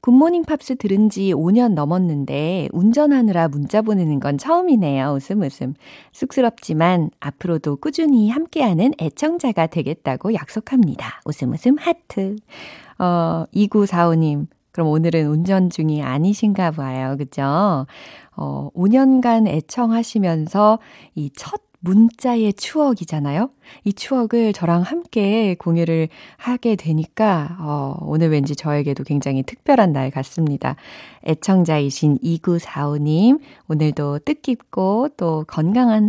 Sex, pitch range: female, 155-245 Hz